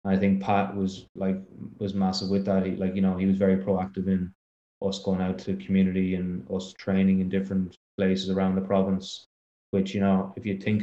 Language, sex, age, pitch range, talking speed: English, male, 20-39, 95-100 Hz, 215 wpm